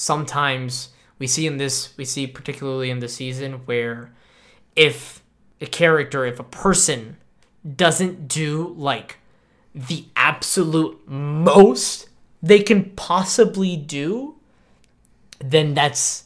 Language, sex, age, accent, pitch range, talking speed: English, male, 20-39, American, 135-170 Hz, 110 wpm